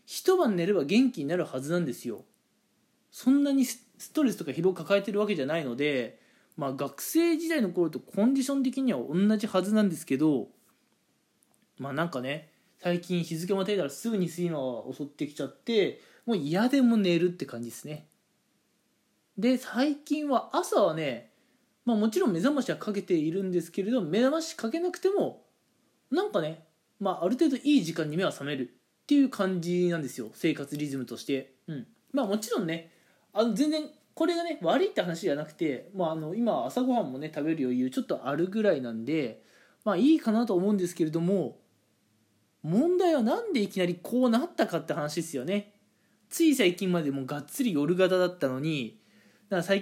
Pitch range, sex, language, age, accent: 160-255 Hz, male, Japanese, 20-39, native